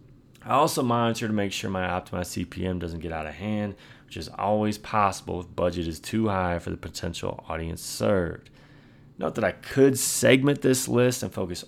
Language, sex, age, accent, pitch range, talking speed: English, male, 30-49, American, 90-125 Hz, 190 wpm